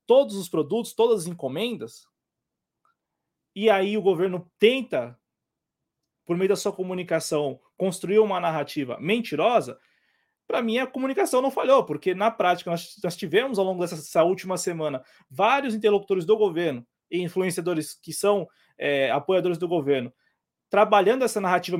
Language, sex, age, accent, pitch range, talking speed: Portuguese, male, 20-39, Brazilian, 170-230 Hz, 140 wpm